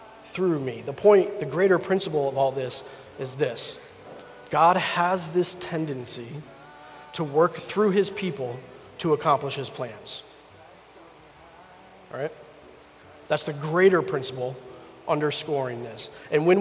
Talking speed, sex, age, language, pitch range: 125 wpm, male, 30-49, English, 135-180 Hz